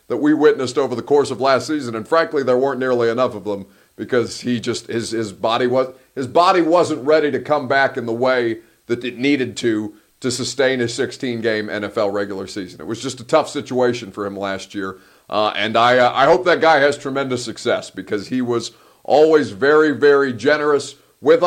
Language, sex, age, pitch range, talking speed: English, male, 40-59, 120-155 Hz, 210 wpm